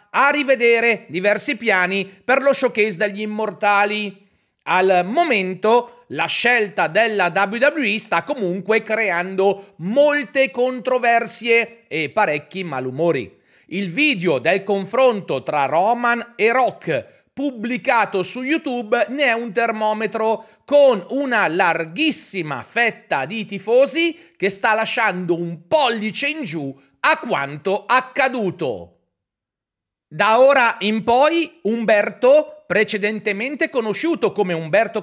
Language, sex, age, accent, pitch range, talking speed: Italian, male, 40-59, native, 195-255 Hz, 110 wpm